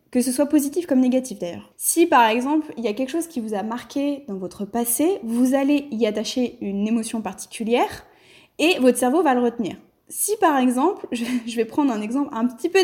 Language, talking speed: French, 215 wpm